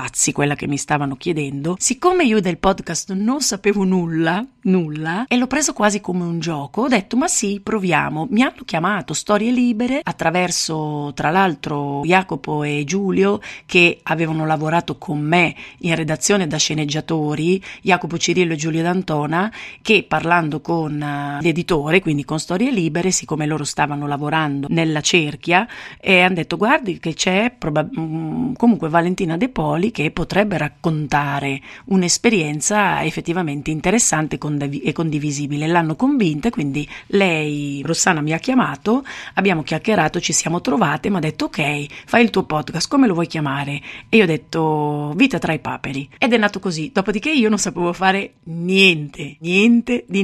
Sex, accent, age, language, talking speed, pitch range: female, native, 40-59, Italian, 150 wpm, 155-200 Hz